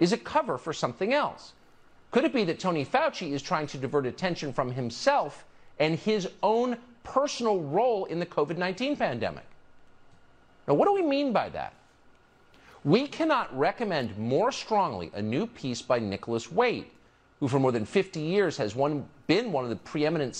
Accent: American